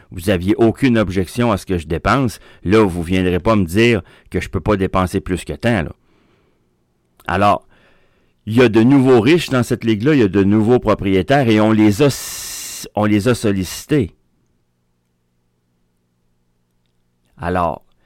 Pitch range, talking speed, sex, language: 80-105 Hz, 160 wpm, male, French